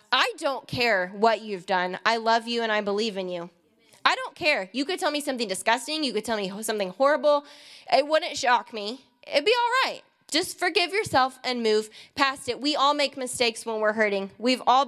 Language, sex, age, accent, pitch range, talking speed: English, female, 20-39, American, 230-300 Hz, 215 wpm